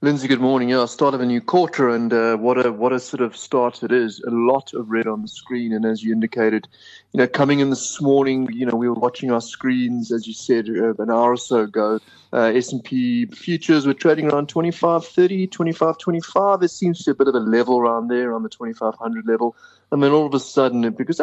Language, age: English, 30-49